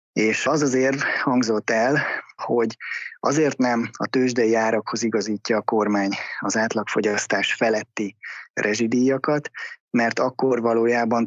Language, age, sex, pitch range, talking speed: Hungarian, 20-39, male, 105-125 Hz, 110 wpm